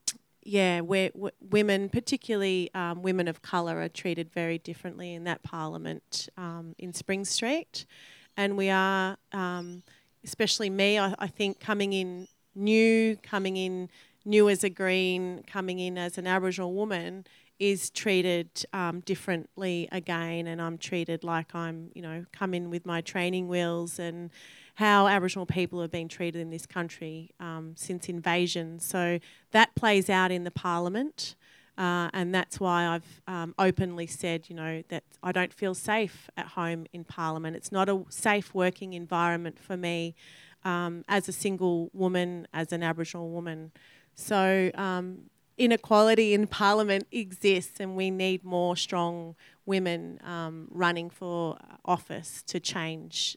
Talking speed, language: 150 wpm, English